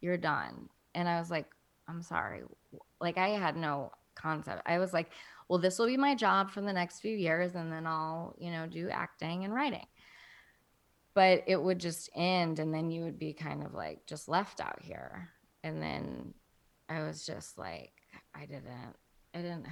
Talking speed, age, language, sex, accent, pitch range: 190 wpm, 20-39, English, female, American, 155-180 Hz